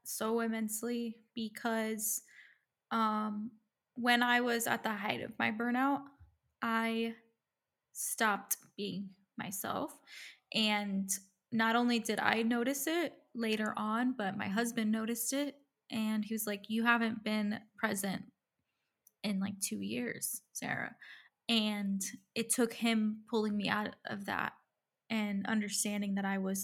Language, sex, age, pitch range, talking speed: English, female, 10-29, 205-230 Hz, 130 wpm